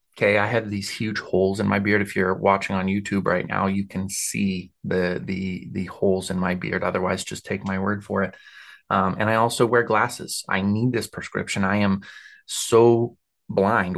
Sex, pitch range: male, 95-120 Hz